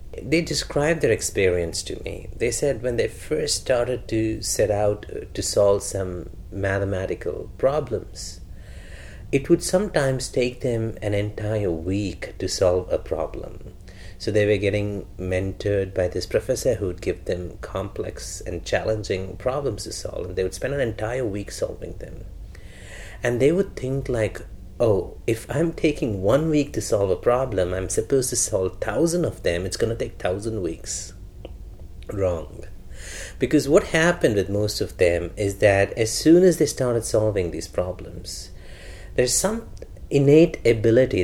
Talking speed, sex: 160 wpm, male